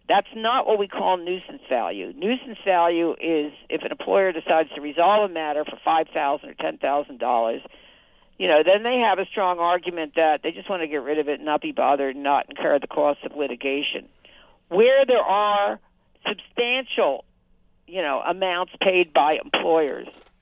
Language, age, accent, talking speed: English, 60-79, American, 175 wpm